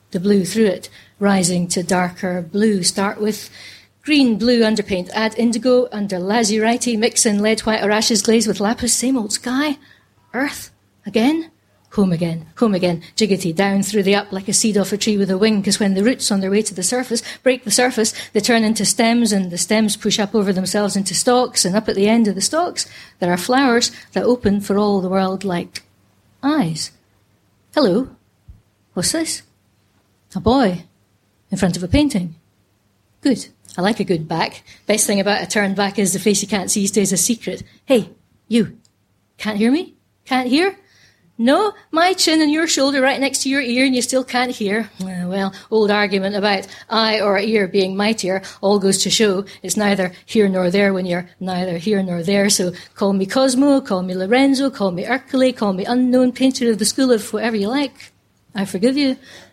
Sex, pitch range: female, 185-235 Hz